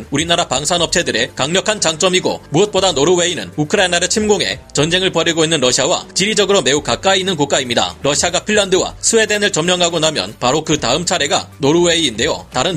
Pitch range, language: 150-190 Hz, Korean